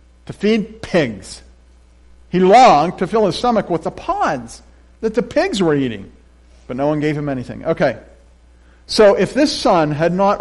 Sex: male